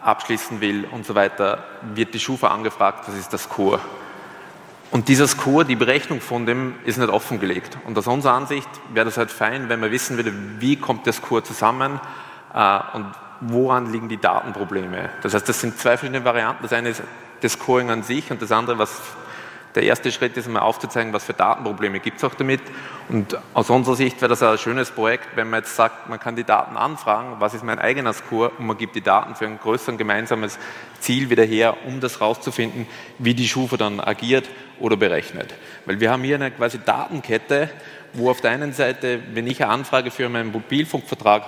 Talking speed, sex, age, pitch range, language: 205 wpm, male, 30-49, 115-135 Hz, German